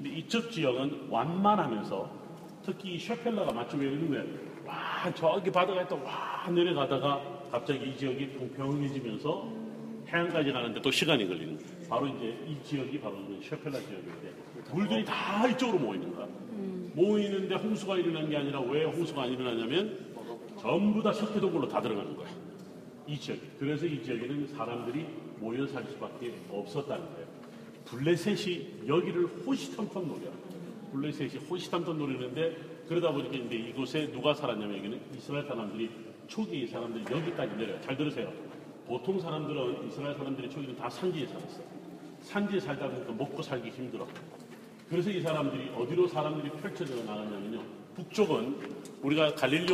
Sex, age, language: male, 40-59, Korean